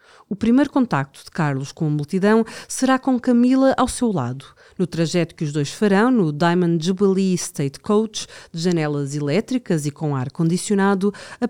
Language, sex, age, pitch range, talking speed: Portuguese, female, 40-59, 155-225 Hz, 165 wpm